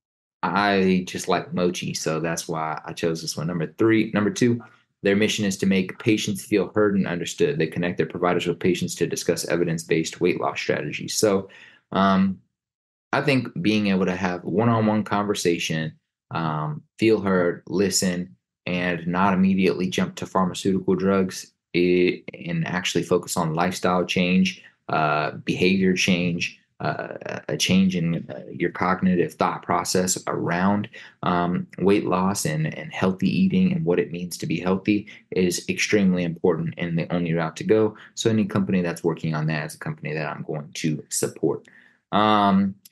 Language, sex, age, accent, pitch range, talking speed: English, male, 20-39, American, 85-105 Hz, 170 wpm